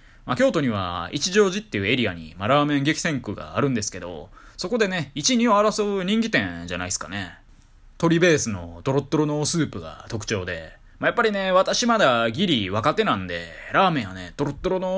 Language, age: Japanese, 20-39